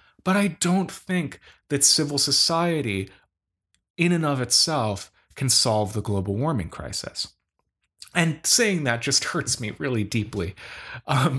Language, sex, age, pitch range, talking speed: English, male, 30-49, 115-190 Hz, 135 wpm